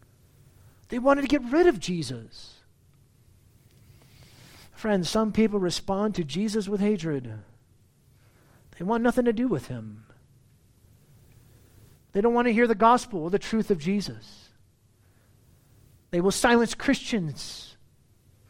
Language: English